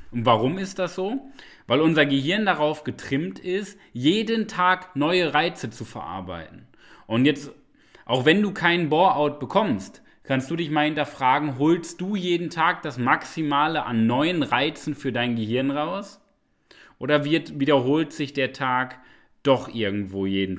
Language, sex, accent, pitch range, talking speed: German, male, German, 130-170 Hz, 150 wpm